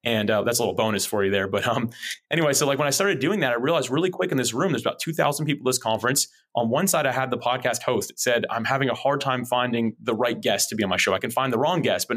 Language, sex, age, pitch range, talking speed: English, male, 30-49, 115-135 Hz, 310 wpm